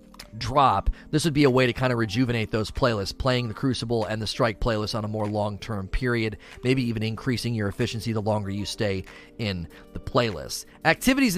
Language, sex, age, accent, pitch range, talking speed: English, male, 30-49, American, 115-145 Hz, 200 wpm